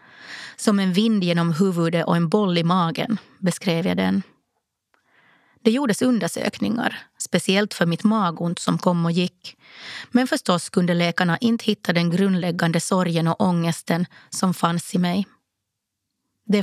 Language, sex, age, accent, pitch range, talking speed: Swedish, female, 30-49, native, 175-210 Hz, 145 wpm